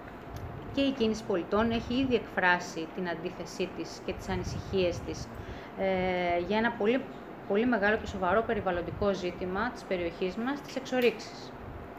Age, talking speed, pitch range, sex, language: 20-39, 145 wpm, 185-250 Hz, female, Greek